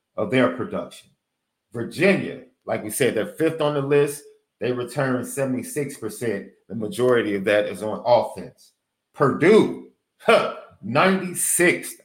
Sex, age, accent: male, 50-69, American